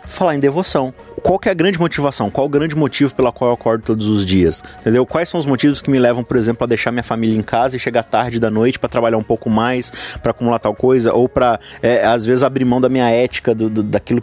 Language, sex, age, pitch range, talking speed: Portuguese, male, 20-39, 100-130 Hz, 265 wpm